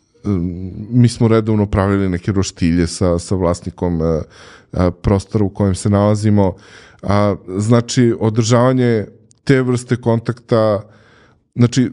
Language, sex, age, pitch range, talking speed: English, male, 20-39, 100-120 Hz, 100 wpm